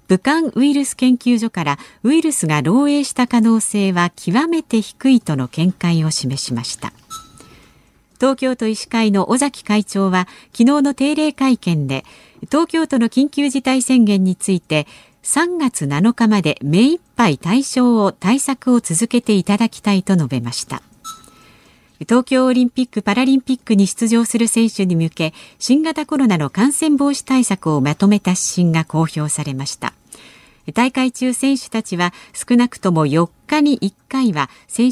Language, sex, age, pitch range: Japanese, female, 50-69, 175-265 Hz